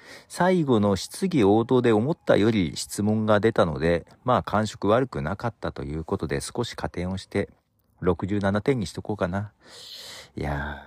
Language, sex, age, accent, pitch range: Japanese, male, 50-69, native, 80-130 Hz